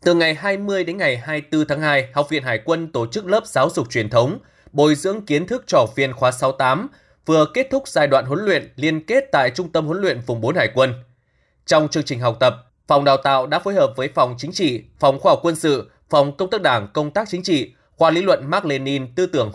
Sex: male